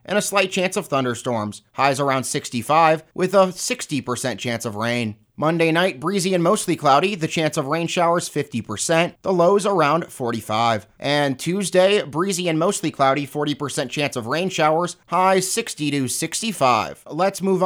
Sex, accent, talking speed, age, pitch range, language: male, American, 165 wpm, 30-49, 150-200 Hz, English